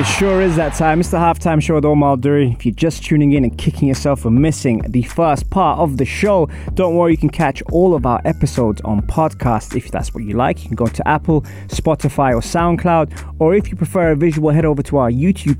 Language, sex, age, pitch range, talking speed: English, male, 20-39, 115-150 Hz, 240 wpm